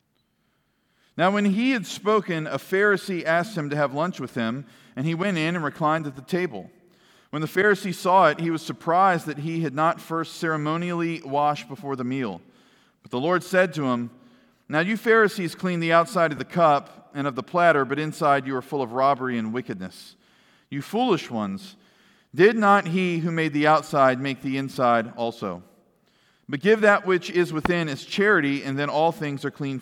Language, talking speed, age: English, 195 wpm, 40-59